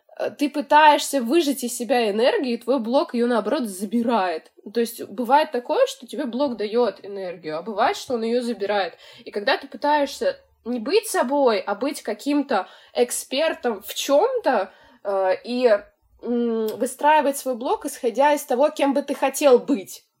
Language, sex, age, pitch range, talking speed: Russian, female, 20-39, 225-295 Hz, 150 wpm